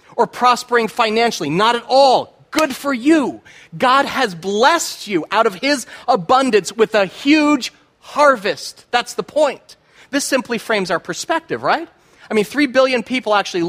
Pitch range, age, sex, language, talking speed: 175-235 Hz, 30-49, male, English, 160 wpm